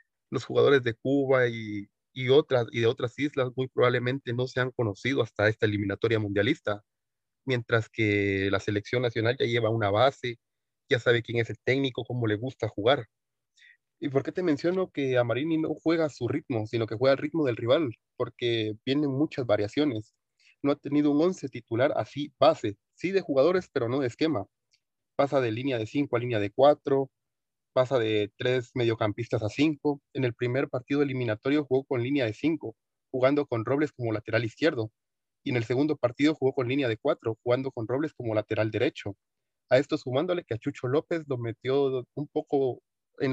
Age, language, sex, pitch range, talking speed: 30-49, Spanish, male, 115-140 Hz, 190 wpm